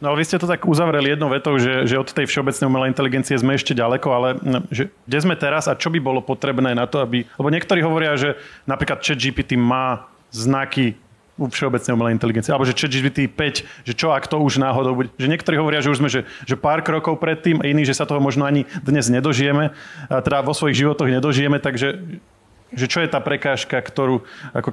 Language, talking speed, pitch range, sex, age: Slovak, 215 wpm, 130-150 Hz, male, 30-49